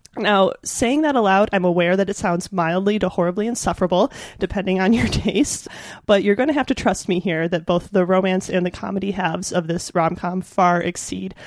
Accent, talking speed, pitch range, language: American, 205 wpm, 175-205 Hz, English